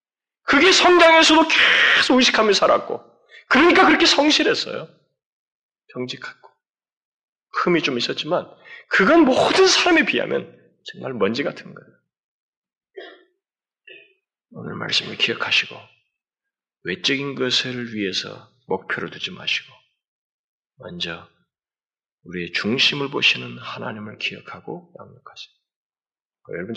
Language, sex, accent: Korean, male, native